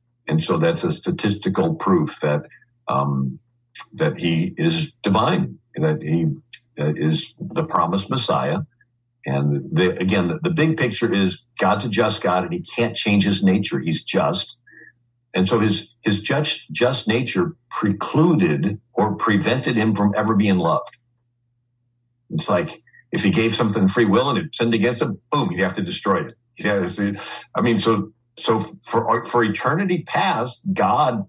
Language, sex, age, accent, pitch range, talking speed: English, male, 50-69, American, 100-125 Hz, 160 wpm